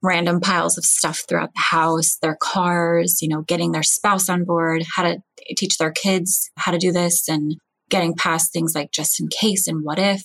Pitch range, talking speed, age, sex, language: 160-185 Hz, 210 wpm, 20-39, female, English